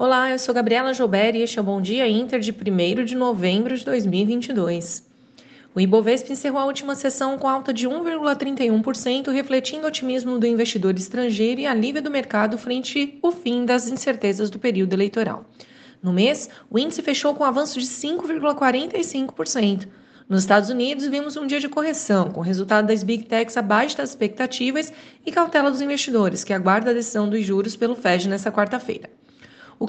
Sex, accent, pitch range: female, Brazilian, 220-275 Hz